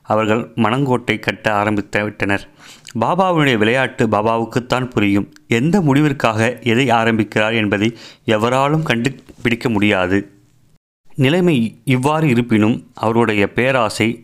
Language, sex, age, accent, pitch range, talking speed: Tamil, male, 30-49, native, 105-125 Hz, 95 wpm